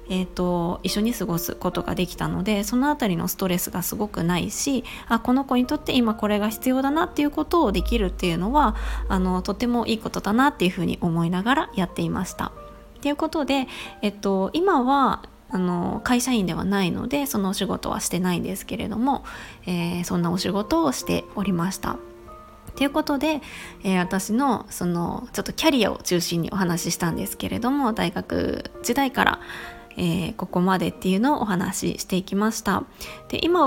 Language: Japanese